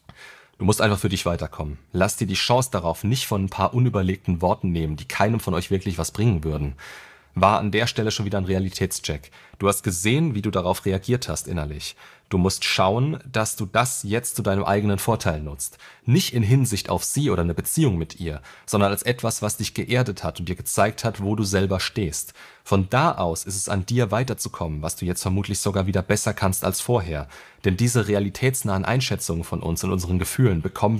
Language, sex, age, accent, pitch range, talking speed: German, male, 30-49, German, 90-110 Hz, 210 wpm